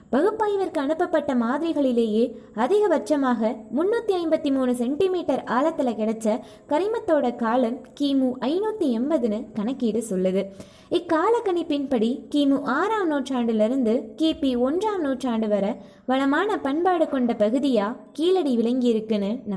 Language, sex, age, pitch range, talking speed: Tamil, female, 20-39, 220-310 Hz, 100 wpm